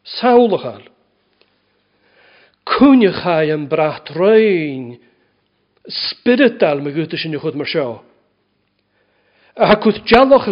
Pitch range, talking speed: 170-225 Hz, 95 wpm